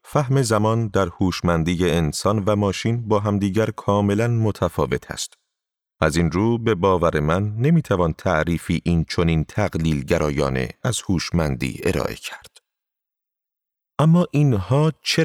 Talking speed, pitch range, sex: 130 wpm, 90-115 Hz, male